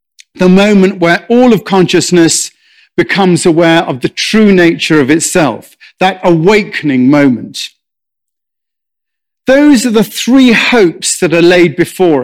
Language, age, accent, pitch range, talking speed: English, 40-59, British, 165-220 Hz, 125 wpm